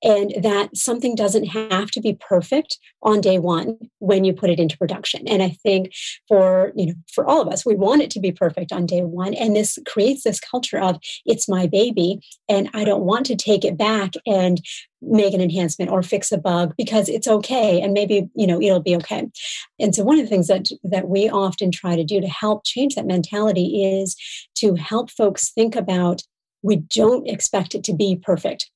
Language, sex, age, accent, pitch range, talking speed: English, female, 40-59, American, 185-220 Hz, 215 wpm